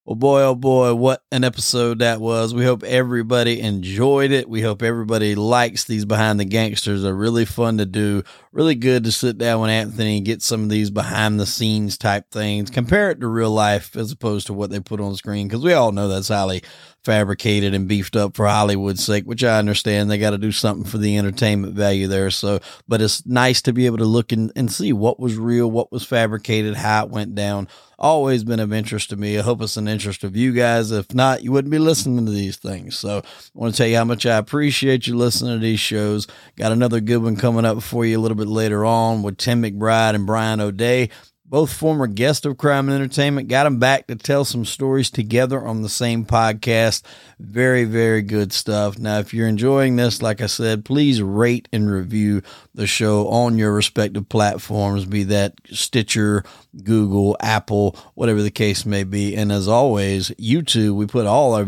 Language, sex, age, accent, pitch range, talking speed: English, male, 30-49, American, 105-120 Hz, 215 wpm